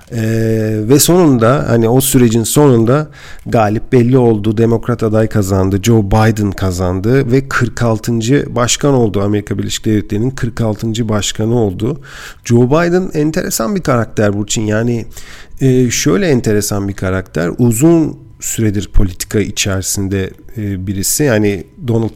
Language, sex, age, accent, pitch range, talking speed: Turkish, male, 50-69, native, 105-130 Hz, 125 wpm